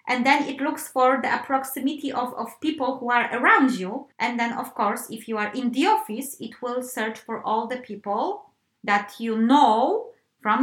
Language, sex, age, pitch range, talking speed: English, female, 20-39, 205-260 Hz, 200 wpm